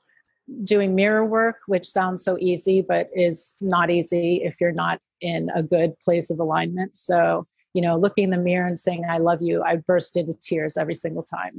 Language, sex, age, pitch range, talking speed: English, female, 30-49, 170-200 Hz, 200 wpm